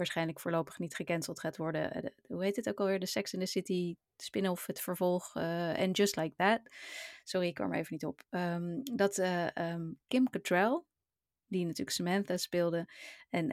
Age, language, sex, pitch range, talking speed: 20-39, Dutch, female, 170-215 Hz, 195 wpm